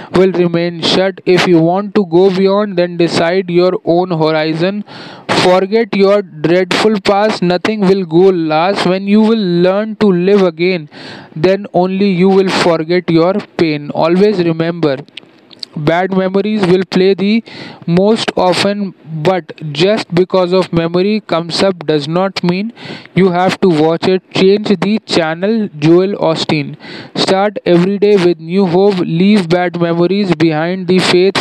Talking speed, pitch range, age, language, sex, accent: 145 wpm, 170-200 Hz, 20-39, Hindi, male, native